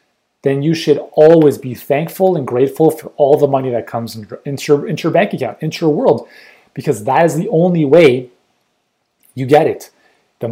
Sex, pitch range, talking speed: male, 130-170 Hz, 190 wpm